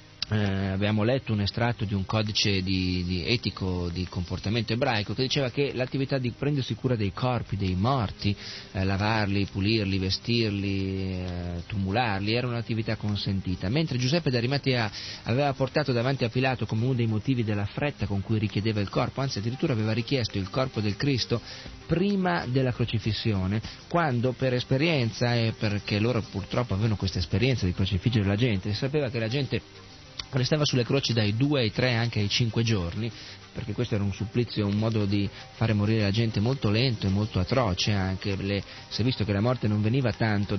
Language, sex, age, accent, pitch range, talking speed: Italian, male, 40-59, native, 100-125 Hz, 175 wpm